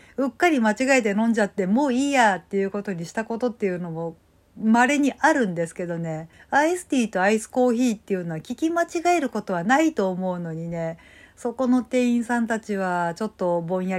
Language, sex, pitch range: Japanese, female, 185-260 Hz